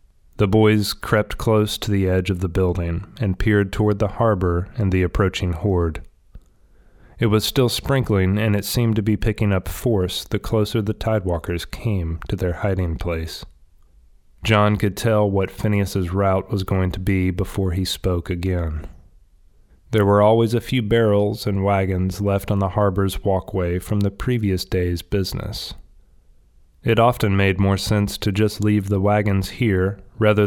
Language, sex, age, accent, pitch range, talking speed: English, male, 30-49, American, 90-105 Hz, 165 wpm